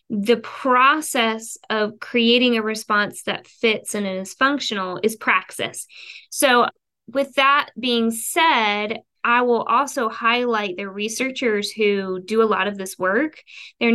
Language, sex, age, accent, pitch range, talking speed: English, female, 20-39, American, 195-235 Hz, 140 wpm